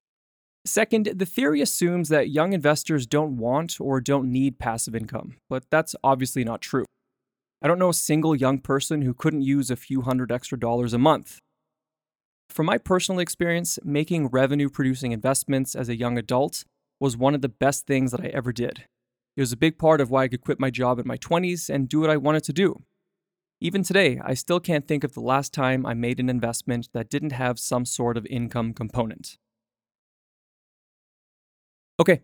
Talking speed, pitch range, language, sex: 190 wpm, 125-155 Hz, English, male